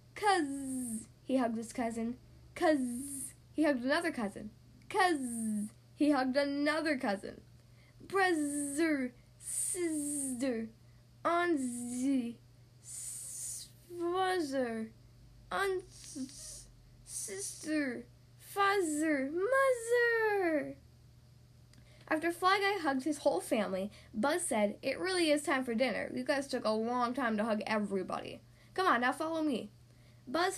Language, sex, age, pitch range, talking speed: English, female, 10-29, 200-330 Hz, 105 wpm